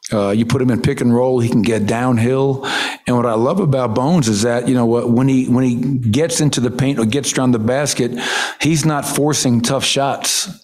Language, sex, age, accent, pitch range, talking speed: English, male, 50-69, American, 115-130 Hz, 225 wpm